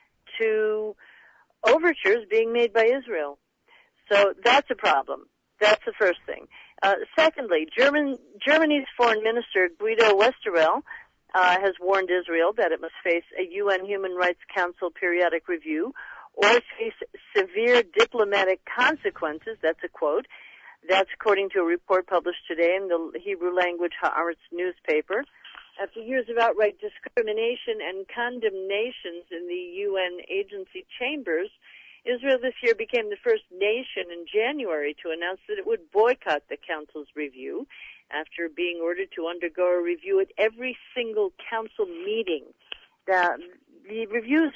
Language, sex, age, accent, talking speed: English, female, 50-69, American, 135 wpm